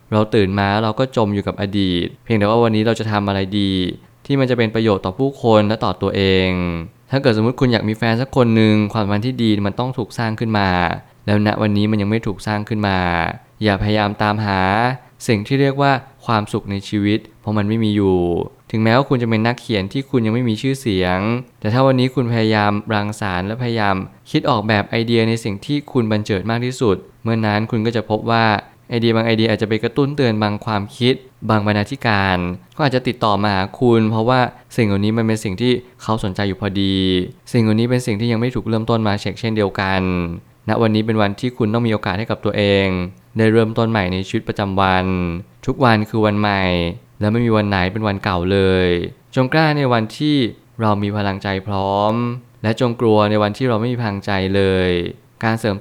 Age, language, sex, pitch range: 20-39, Thai, male, 100-120 Hz